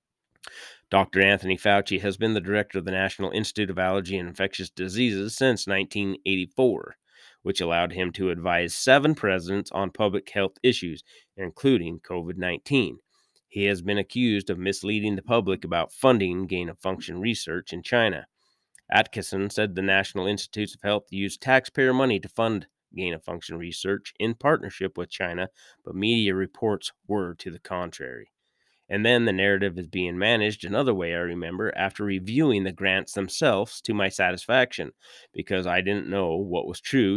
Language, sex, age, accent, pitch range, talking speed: English, male, 30-49, American, 95-105 Hz, 155 wpm